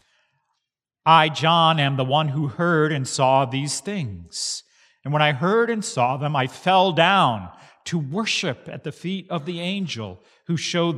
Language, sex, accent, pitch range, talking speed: English, male, American, 130-190 Hz, 170 wpm